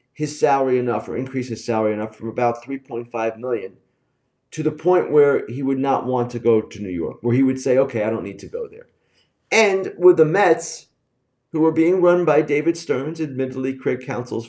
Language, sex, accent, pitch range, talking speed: English, male, American, 125-180 Hz, 205 wpm